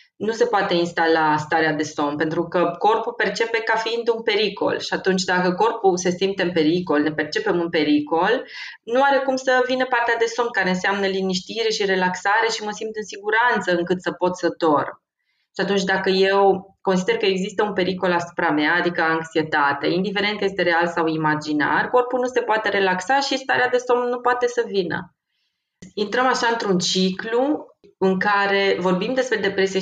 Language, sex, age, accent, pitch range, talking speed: Romanian, female, 20-39, native, 175-230 Hz, 185 wpm